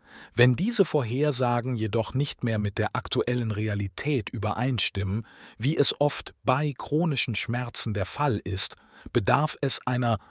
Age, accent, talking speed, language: 50-69, German, 135 wpm, German